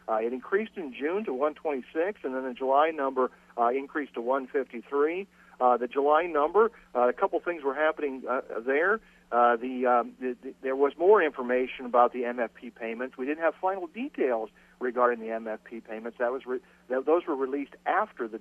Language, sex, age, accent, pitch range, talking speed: English, male, 50-69, American, 115-155 Hz, 190 wpm